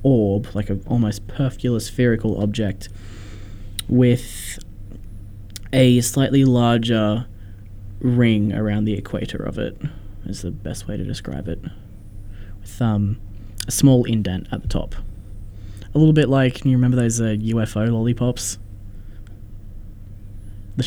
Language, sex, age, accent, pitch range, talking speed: English, male, 20-39, Australian, 100-120 Hz, 125 wpm